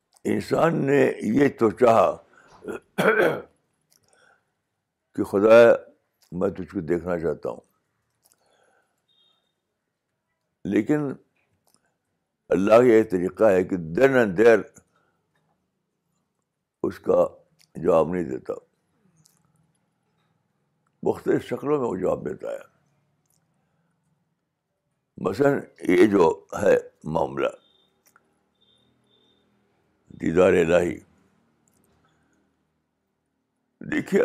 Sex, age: male, 60-79